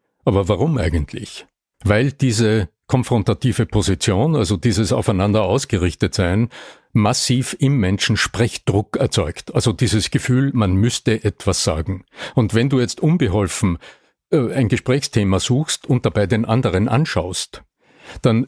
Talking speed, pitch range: 120 wpm, 100-130 Hz